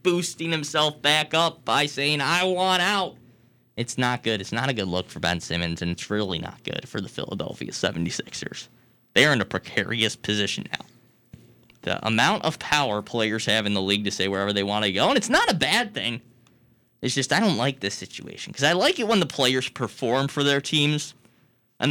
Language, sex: English, male